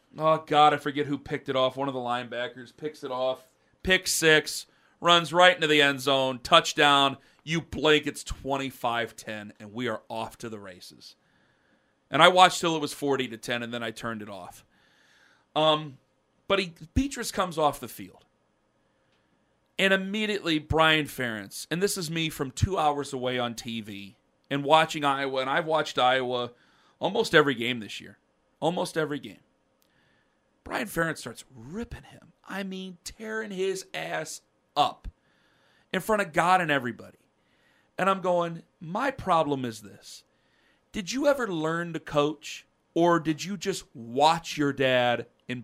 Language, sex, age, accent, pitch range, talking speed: English, male, 40-59, American, 125-180 Hz, 160 wpm